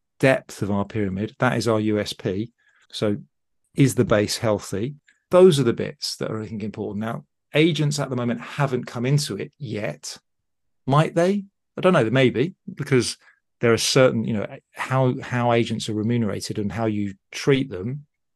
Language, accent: English, British